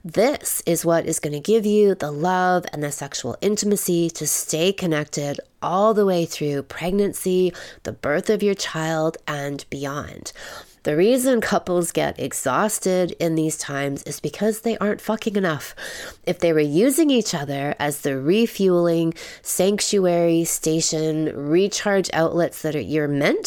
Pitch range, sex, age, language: 145-185 Hz, female, 20-39, English